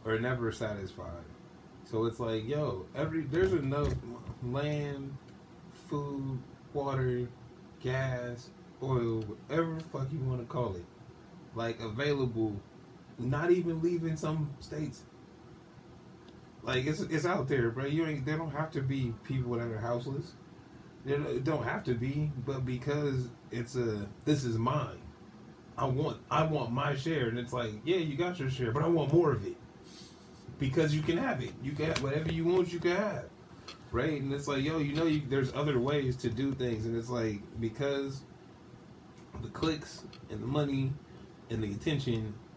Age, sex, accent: 20-39, male, American